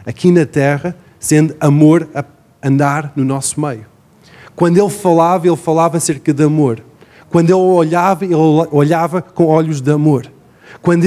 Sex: male